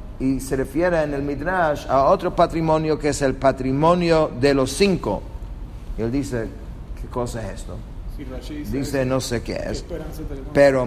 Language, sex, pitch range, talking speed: English, male, 115-150 Hz, 155 wpm